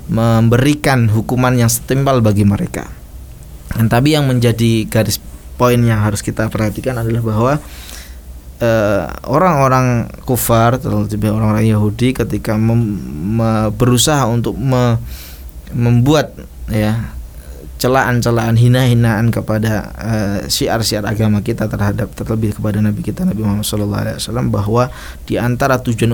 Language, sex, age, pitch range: Indonesian, male, 20-39, 105-125 Hz